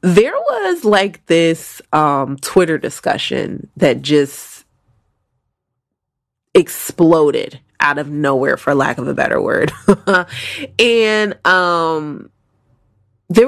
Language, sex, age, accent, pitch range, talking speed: English, female, 20-39, American, 145-205 Hz, 100 wpm